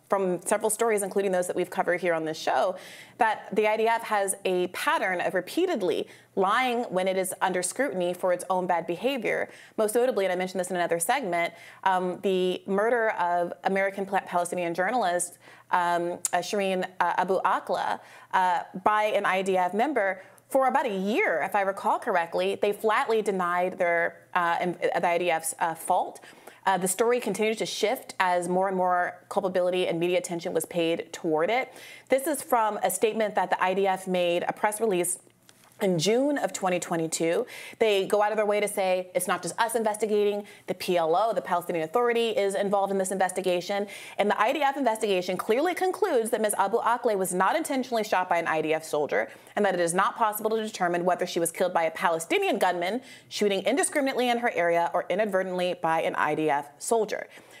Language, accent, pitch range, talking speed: English, American, 175-215 Hz, 180 wpm